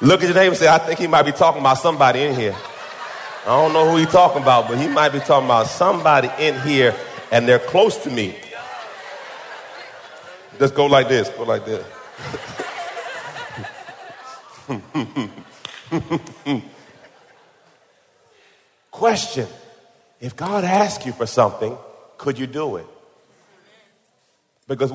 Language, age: English, 40-59